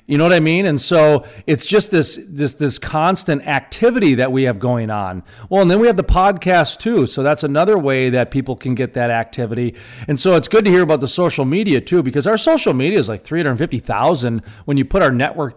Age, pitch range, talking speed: 40-59, 130-170 Hz, 245 wpm